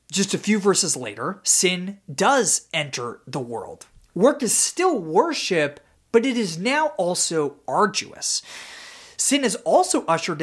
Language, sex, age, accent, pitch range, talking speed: English, male, 30-49, American, 150-240 Hz, 140 wpm